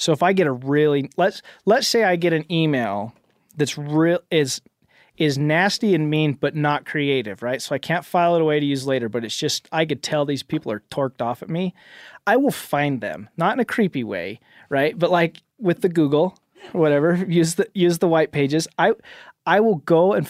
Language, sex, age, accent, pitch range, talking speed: English, male, 30-49, American, 145-190 Hz, 220 wpm